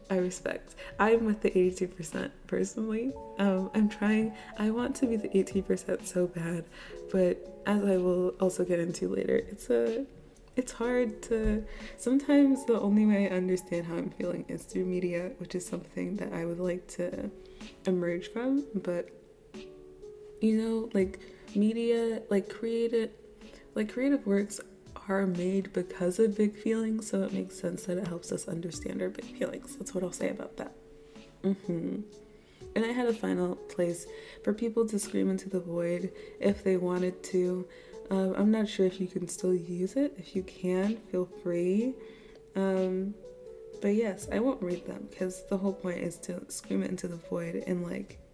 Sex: female